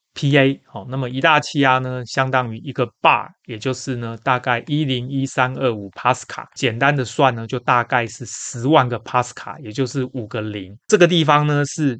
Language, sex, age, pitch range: Chinese, male, 20-39, 115-135 Hz